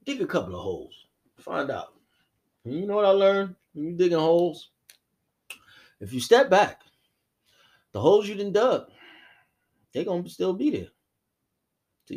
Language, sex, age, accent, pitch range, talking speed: English, male, 30-49, American, 100-150 Hz, 160 wpm